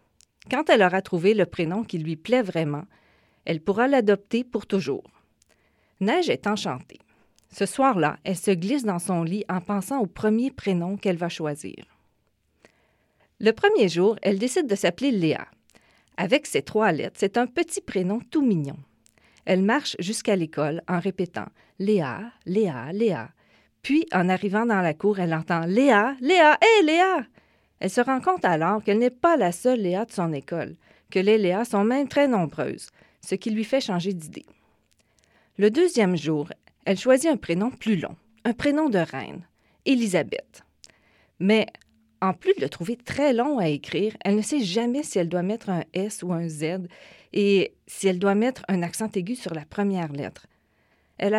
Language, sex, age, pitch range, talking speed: French, female, 40-59, 180-240 Hz, 180 wpm